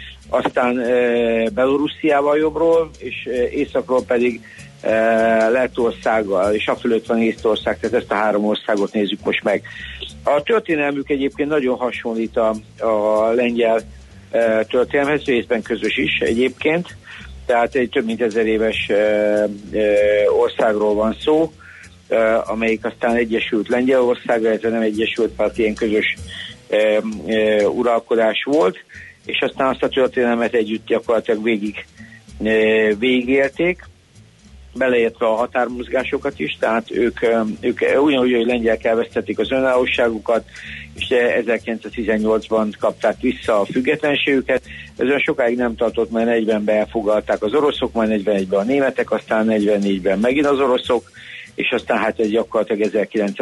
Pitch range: 105-125 Hz